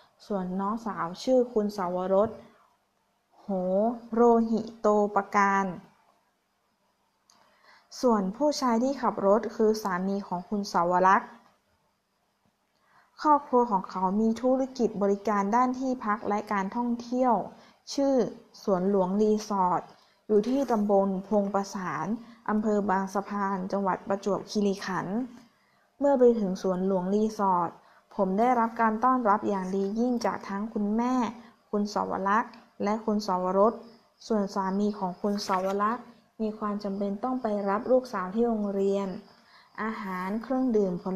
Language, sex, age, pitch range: Thai, female, 20-39, 195-230 Hz